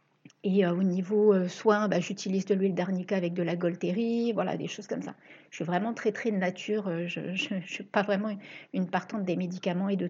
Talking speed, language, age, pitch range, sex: 215 wpm, French, 60-79, 190-235 Hz, female